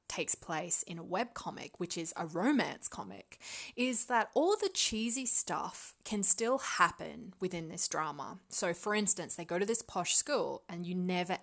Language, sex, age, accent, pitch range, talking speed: English, female, 20-39, Australian, 175-240 Hz, 180 wpm